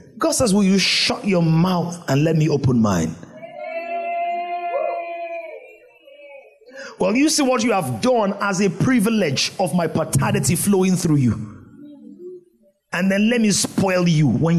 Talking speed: 145 wpm